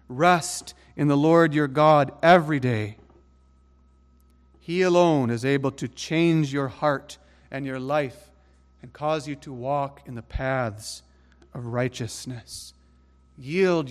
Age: 40-59